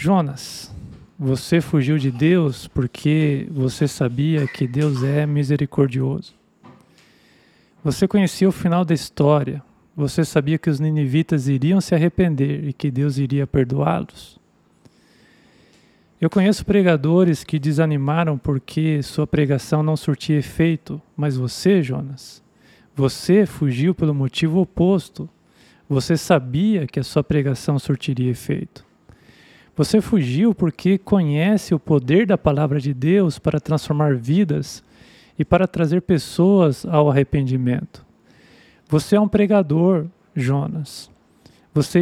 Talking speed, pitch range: 120 wpm, 145-175 Hz